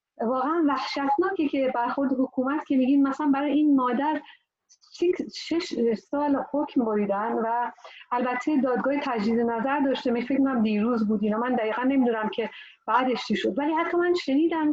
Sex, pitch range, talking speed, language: female, 225-270 Hz, 145 wpm, Persian